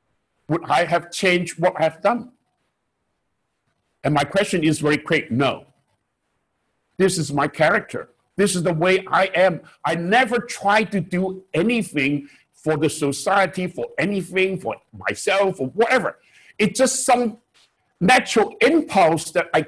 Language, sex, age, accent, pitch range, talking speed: English, male, 60-79, American, 155-200 Hz, 145 wpm